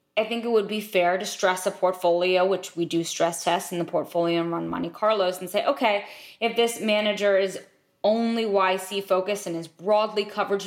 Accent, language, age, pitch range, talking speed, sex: American, English, 20-39, 175-215 Hz, 200 wpm, female